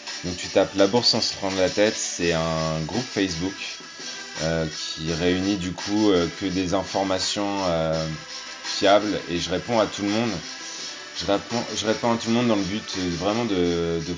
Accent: French